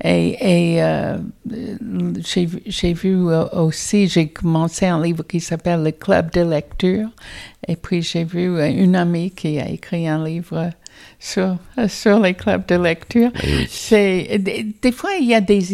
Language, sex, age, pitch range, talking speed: French, female, 60-79, 180-215 Hz, 160 wpm